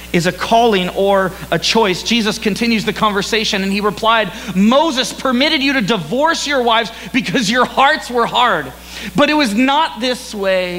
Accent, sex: American, male